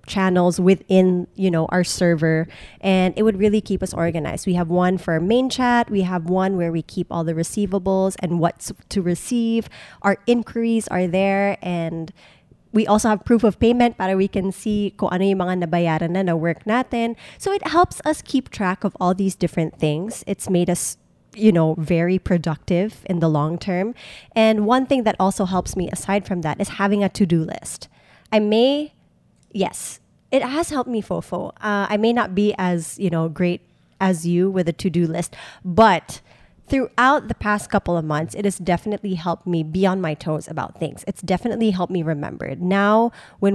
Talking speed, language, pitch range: 195 wpm, English, 170-205 Hz